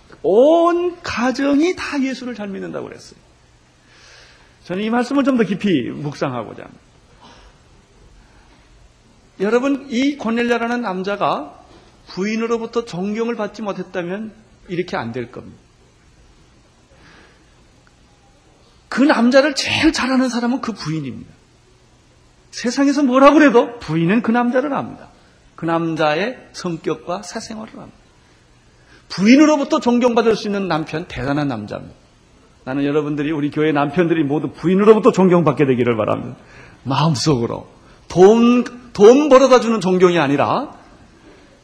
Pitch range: 150-245 Hz